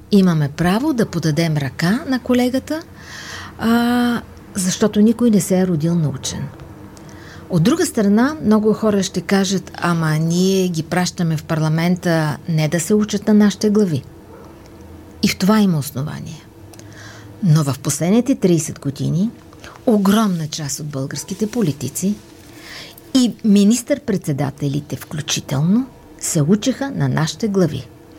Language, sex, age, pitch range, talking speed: Bulgarian, female, 50-69, 150-200 Hz, 125 wpm